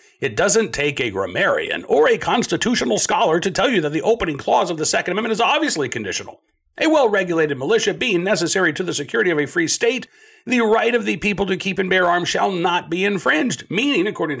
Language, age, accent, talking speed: English, 60-79, American, 210 wpm